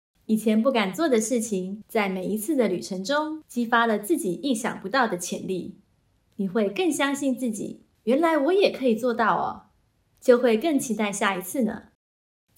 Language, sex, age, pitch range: Chinese, female, 20-39, 200-255 Hz